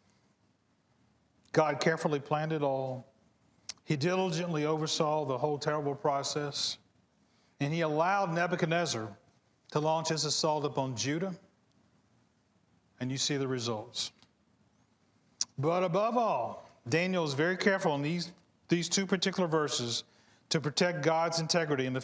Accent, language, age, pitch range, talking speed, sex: American, English, 40-59, 130-175 Hz, 125 wpm, male